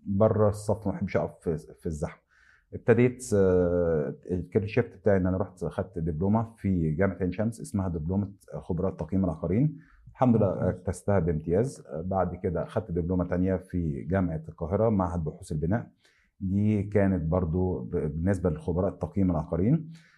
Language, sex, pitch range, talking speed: Arabic, male, 85-105 Hz, 135 wpm